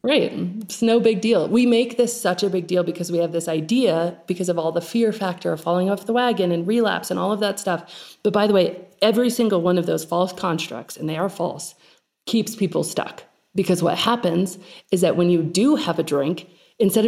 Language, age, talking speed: English, 30-49, 230 wpm